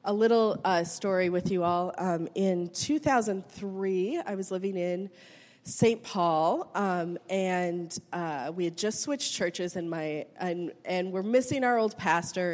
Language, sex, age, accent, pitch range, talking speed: English, female, 30-49, American, 175-210 Hz, 160 wpm